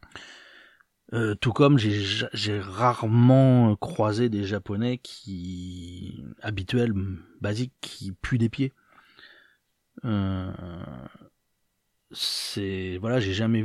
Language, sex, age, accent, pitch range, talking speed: French, male, 30-49, French, 95-115 Hz, 90 wpm